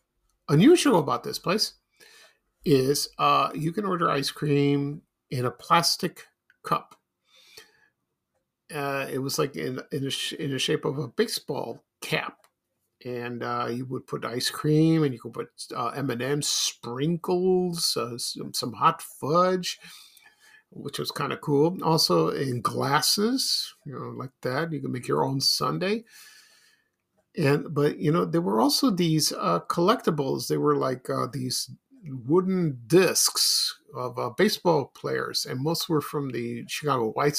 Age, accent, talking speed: 50-69, American, 150 wpm